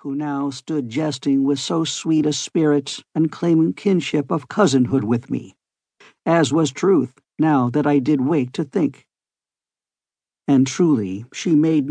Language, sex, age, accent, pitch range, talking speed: English, male, 60-79, American, 140-175 Hz, 150 wpm